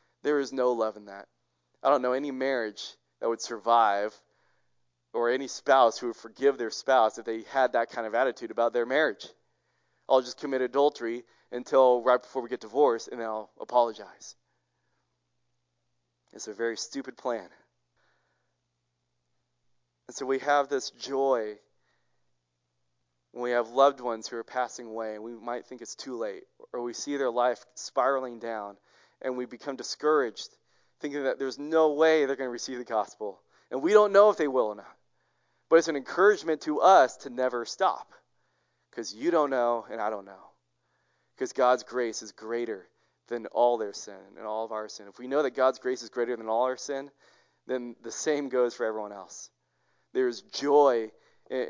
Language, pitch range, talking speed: English, 110-130 Hz, 180 wpm